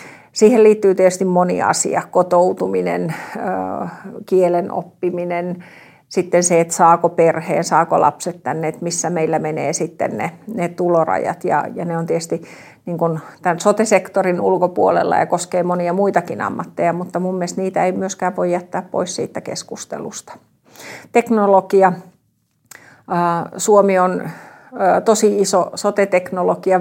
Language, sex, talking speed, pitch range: Finnish, female, 125 wpm, 170-190 Hz